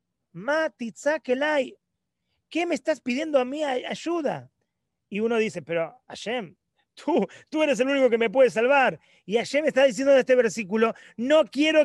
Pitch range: 200-275 Hz